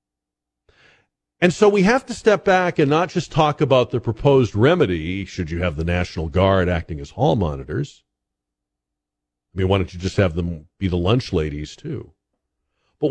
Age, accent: 50-69, American